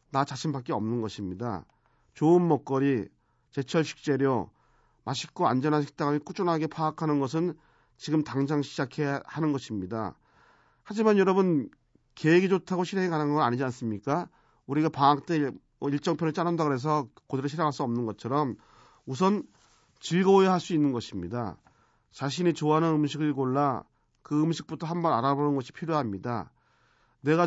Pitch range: 125-160 Hz